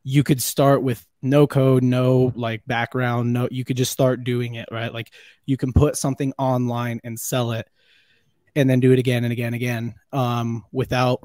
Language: English